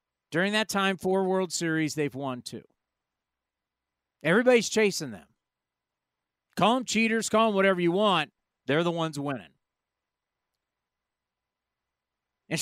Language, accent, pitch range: English, American, 150-210 Hz